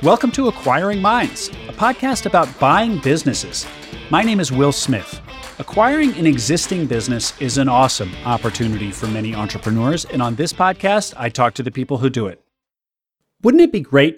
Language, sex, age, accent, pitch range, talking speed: English, male, 40-59, American, 125-185 Hz, 175 wpm